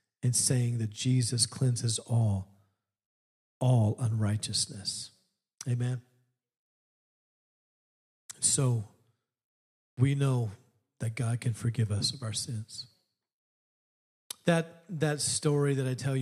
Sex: male